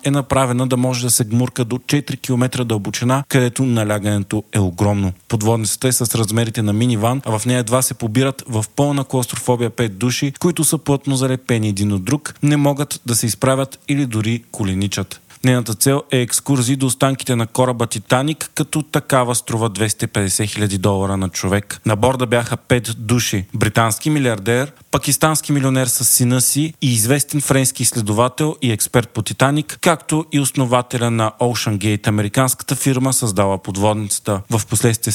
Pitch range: 110-135 Hz